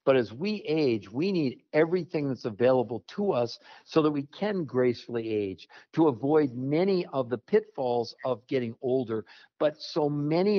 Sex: male